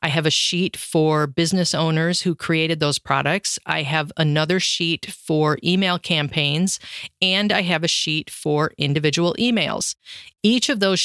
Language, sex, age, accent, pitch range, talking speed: English, female, 40-59, American, 165-200 Hz, 155 wpm